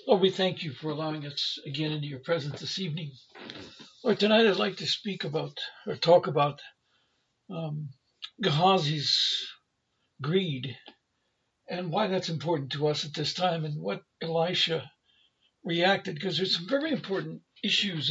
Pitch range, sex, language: 145-190 Hz, male, English